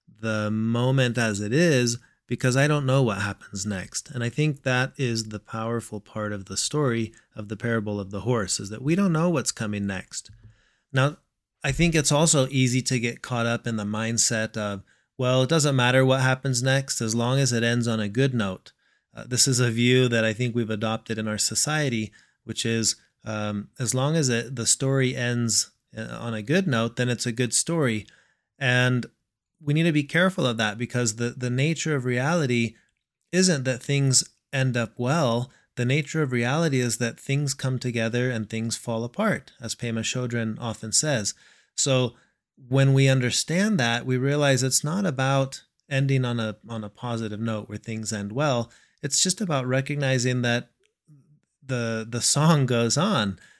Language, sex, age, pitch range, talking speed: English, male, 30-49, 115-135 Hz, 185 wpm